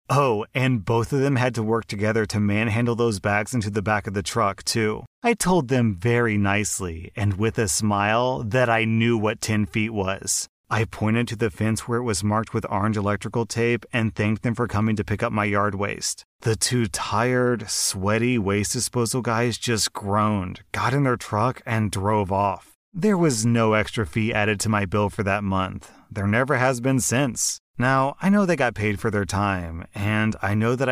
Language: English